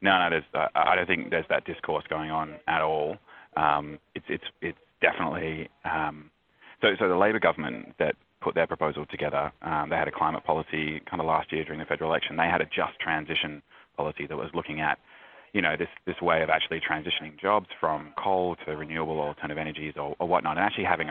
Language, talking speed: English, 215 wpm